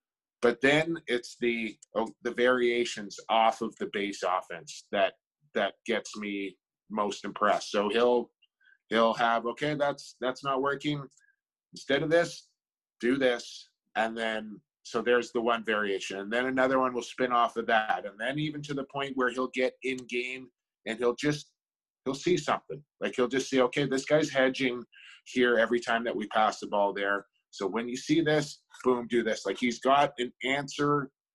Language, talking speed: English, 180 wpm